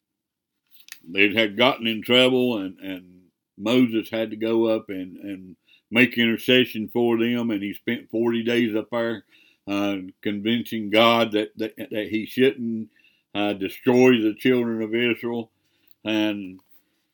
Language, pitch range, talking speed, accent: English, 105-125 Hz, 140 wpm, American